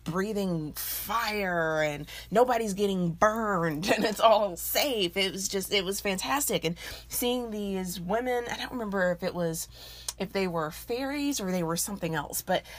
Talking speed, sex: 170 wpm, female